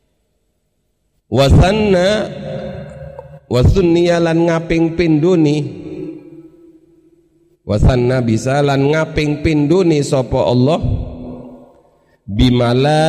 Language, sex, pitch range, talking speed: Indonesian, male, 110-155 Hz, 60 wpm